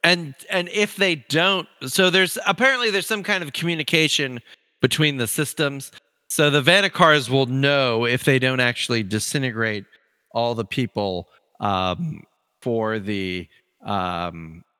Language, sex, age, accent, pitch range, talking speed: English, male, 40-59, American, 115-150 Hz, 135 wpm